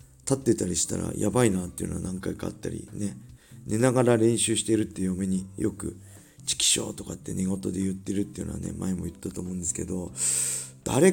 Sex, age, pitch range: male, 40-59, 95-125 Hz